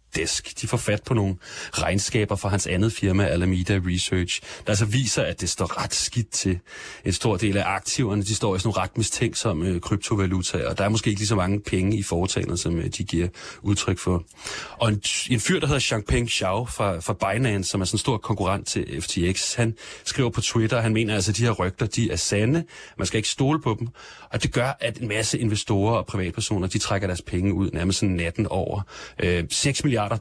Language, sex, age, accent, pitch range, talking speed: Danish, male, 30-49, native, 95-115 Hz, 220 wpm